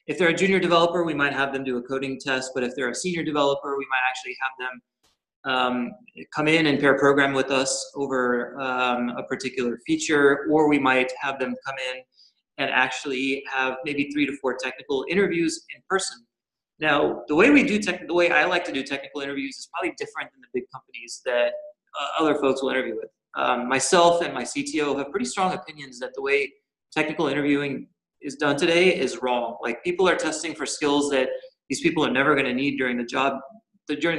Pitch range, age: 130-165 Hz, 30-49